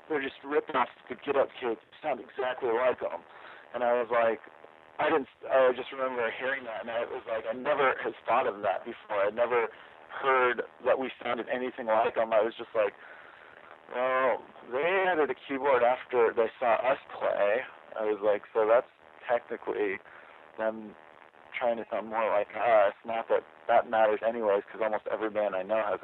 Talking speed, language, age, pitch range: 185 wpm, English, 40-59, 100-130 Hz